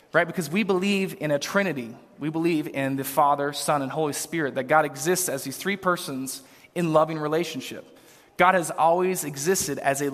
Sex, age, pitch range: male, 20-39, 145-190 Hz